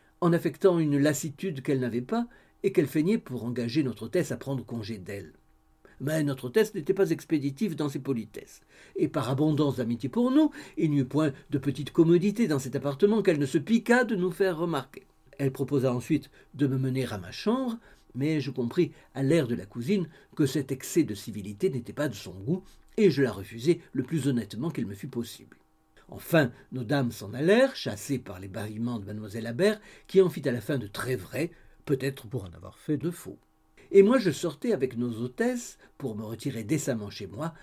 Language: French